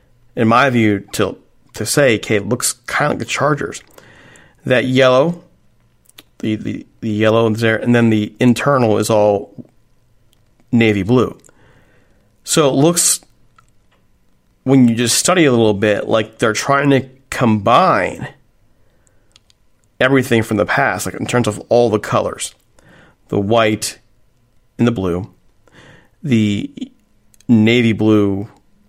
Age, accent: 40-59, American